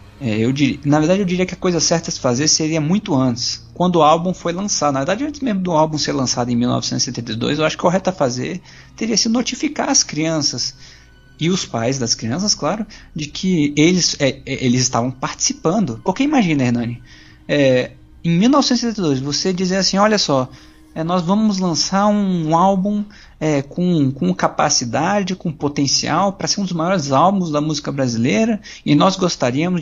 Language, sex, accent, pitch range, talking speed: Portuguese, male, Brazilian, 145-205 Hz, 185 wpm